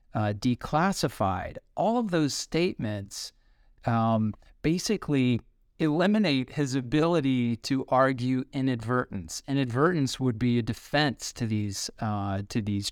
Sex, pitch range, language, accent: male, 110-140 Hz, English, American